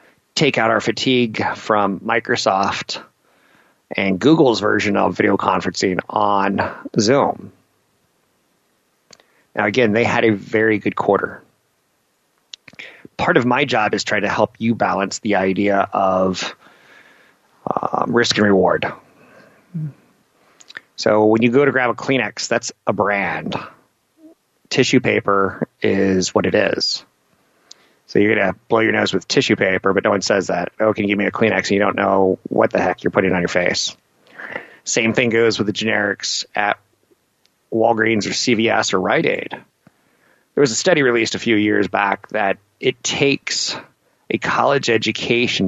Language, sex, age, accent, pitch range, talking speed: English, male, 30-49, American, 100-115 Hz, 155 wpm